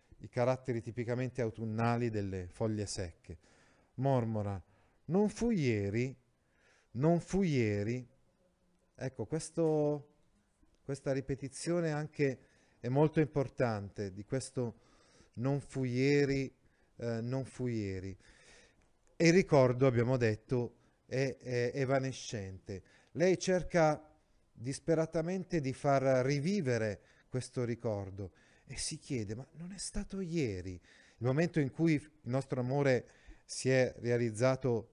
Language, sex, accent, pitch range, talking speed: Italian, male, native, 110-145 Hz, 110 wpm